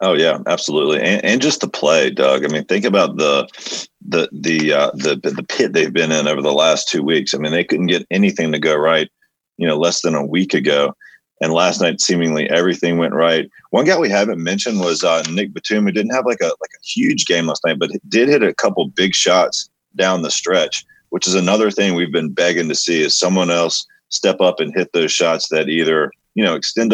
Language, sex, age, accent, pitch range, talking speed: English, male, 40-59, American, 85-110 Hz, 235 wpm